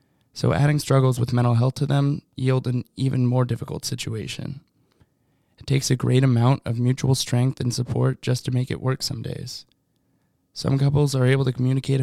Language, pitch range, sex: English, 120-135 Hz, male